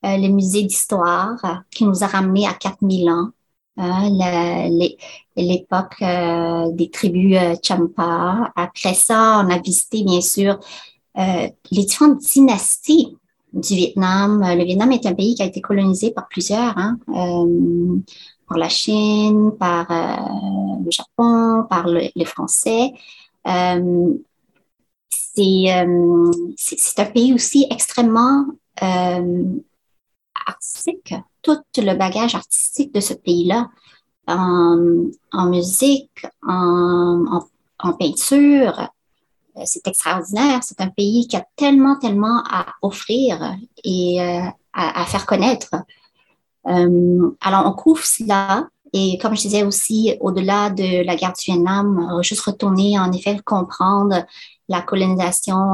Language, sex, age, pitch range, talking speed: French, male, 30-49, 175-225 Hz, 125 wpm